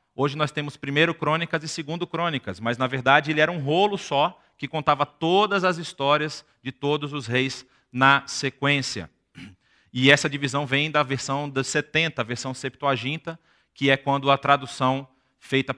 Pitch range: 120-140 Hz